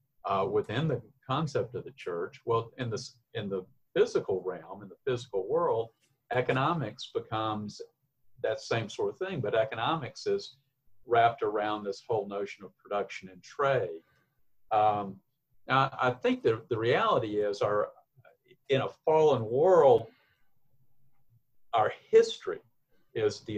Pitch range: 105-175 Hz